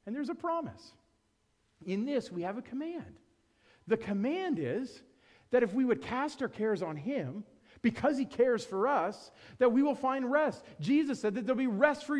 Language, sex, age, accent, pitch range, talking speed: English, male, 40-59, American, 160-260 Hz, 190 wpm